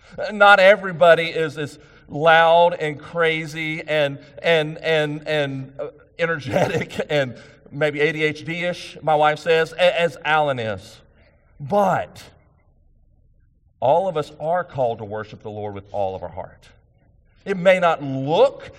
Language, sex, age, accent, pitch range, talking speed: English, male, 40-59, American, 120-165 Hz, 130 wpm